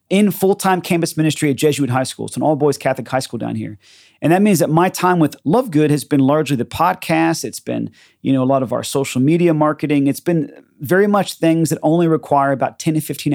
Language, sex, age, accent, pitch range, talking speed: English, male, 30-49, American, 135-170 Hz, 240 wpm